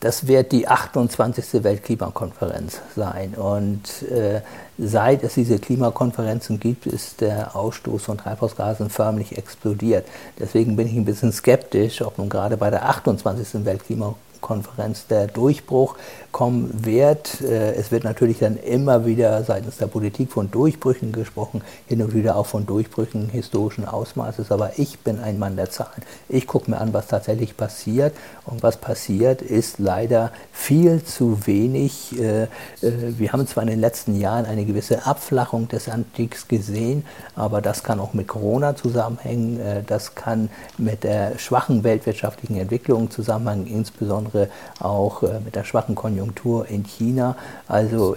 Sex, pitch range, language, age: male, 105-120 Hz, German, 50-69